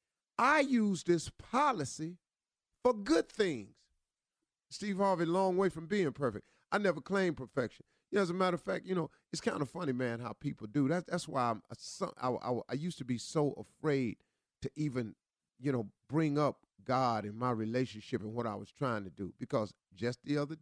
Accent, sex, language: American, male, English